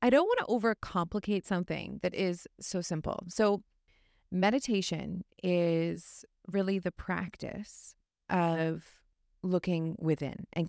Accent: American